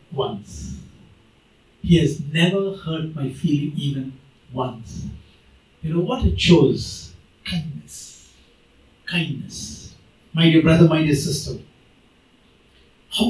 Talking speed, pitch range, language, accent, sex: 105 wpm, 140-190 Hz, English, Indian, male